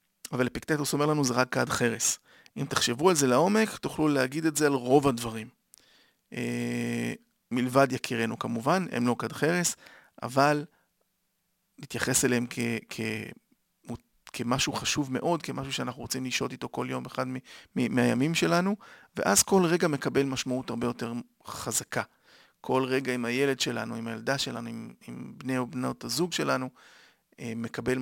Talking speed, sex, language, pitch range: 150 wpm, male, Hebrew, 115-150 Hz